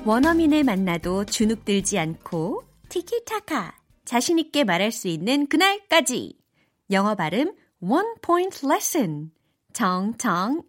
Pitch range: 195-290 Hz